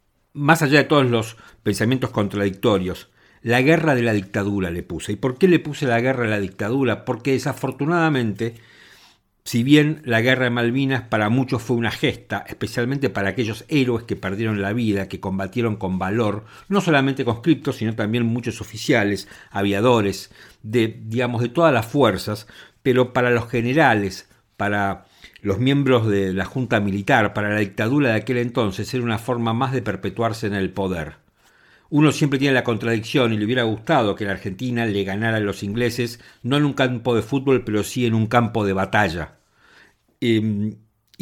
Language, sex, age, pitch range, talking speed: Spanish, male, 50-69, 105-130 Hz, 175 wpm